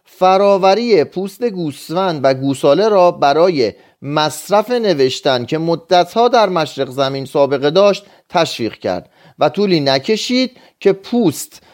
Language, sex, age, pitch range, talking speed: Persian, male, 30-49, 140-195 Hz, 120 wpm